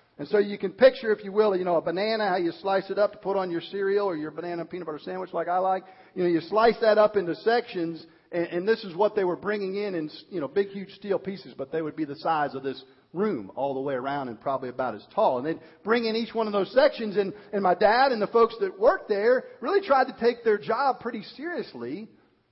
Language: English